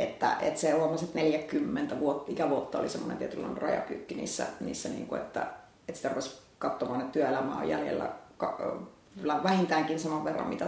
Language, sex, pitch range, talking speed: Finnish, female, 155-175 Hz, 165 wpm